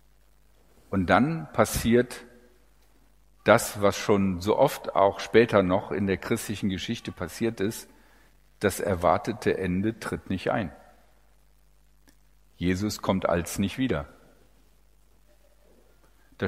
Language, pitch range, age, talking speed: German, 95-115 Hz, 50-69, 105 wpm